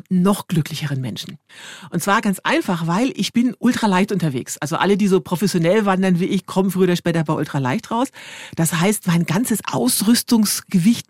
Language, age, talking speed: German, 40-59, 175 wpm